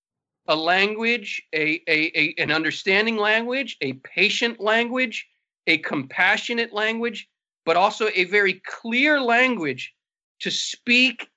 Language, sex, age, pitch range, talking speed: English, male, 40-59, 180-230 Hz, 100 wpm